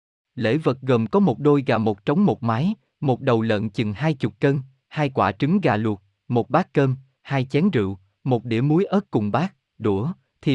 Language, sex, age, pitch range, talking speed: Vietnamese, male, 20-39, 110-150 Hz, 210 wpm